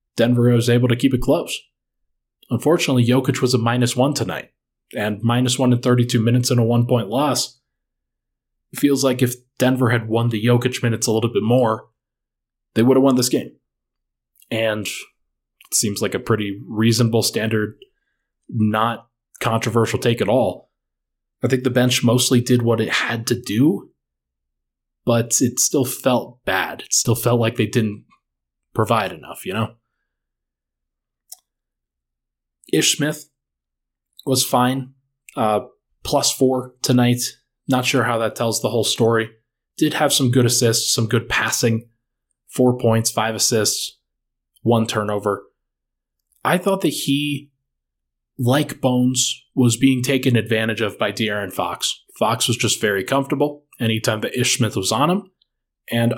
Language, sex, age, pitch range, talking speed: English, male, 20-39, 110-130 Hz, 150 wpm